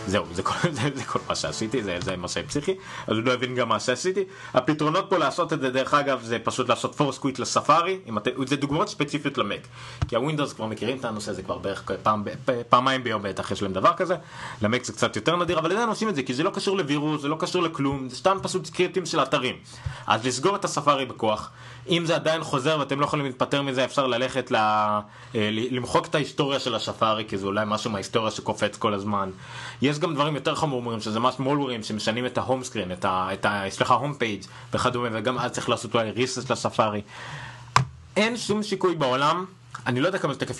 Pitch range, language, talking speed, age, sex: 110-145 Hz, Hebrew, 205 wpm, 30-49, male